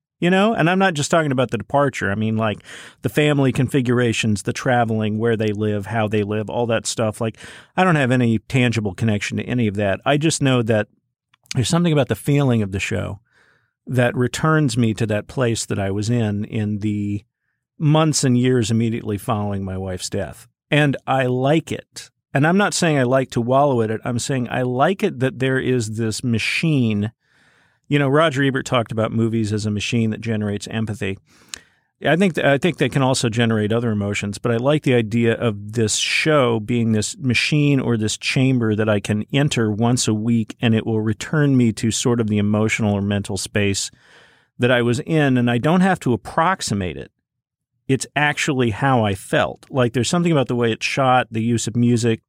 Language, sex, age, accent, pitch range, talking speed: English, male, 50-69, American, 110-135 Hz, 205 wpm